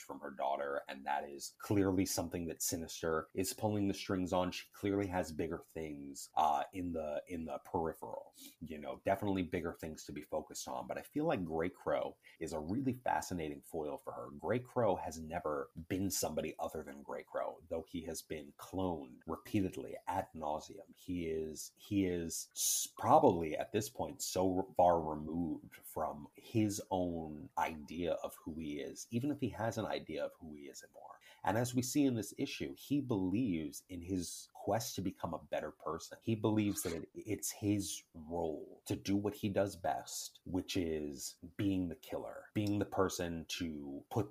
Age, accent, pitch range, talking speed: 30-49, American, 80-100 Hz, 185 wpm